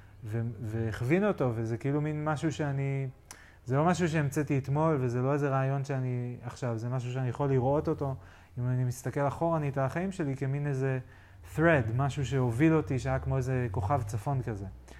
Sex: male